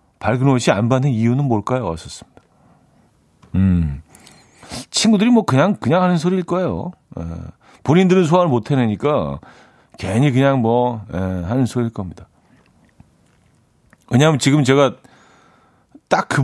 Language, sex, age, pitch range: Korean, male, 40-59, 105-150 Hz